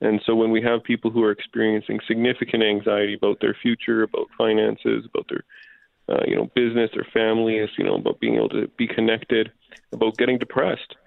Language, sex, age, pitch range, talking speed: English, male, 30-49, 100-120 Hz, 190 wpm